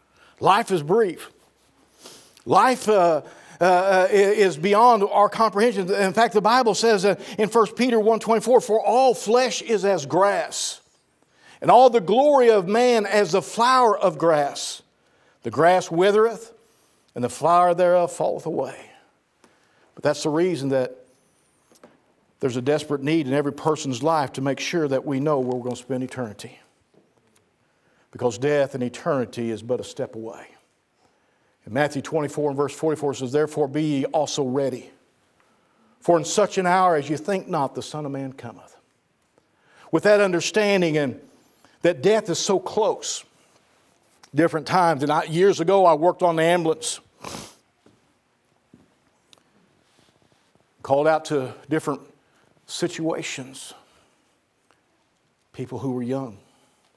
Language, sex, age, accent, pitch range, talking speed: English, male, 50-69, American, 140-205 Hz, 140 wpm